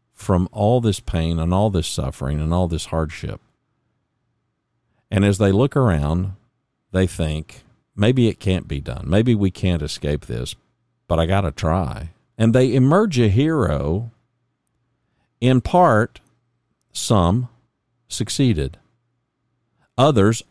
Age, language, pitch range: 50-69, English, 85-120 Hz